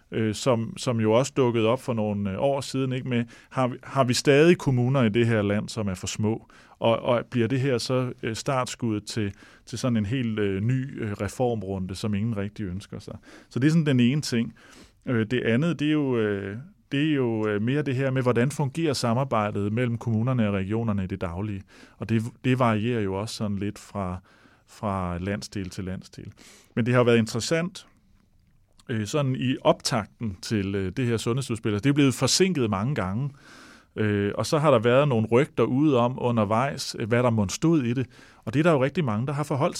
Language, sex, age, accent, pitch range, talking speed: English, male, 30-49, Danish, 105-130 Hz, 200 wpm